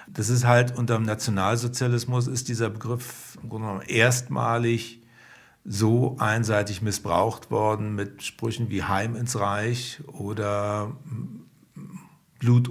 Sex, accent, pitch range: male, German, 95-120 Hz